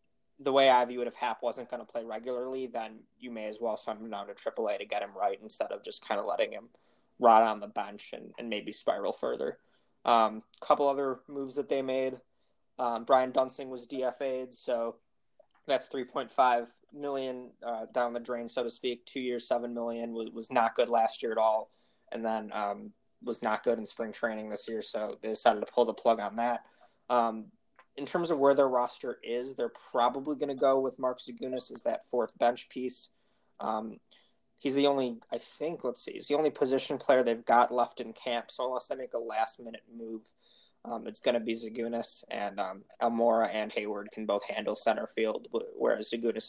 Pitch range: 115-130 Hz